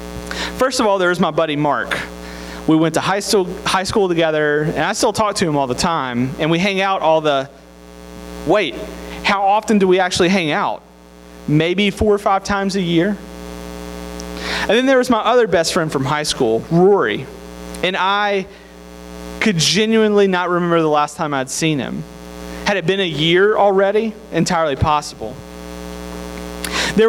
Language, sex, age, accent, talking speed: English, male, 30-49, American, 175 wpm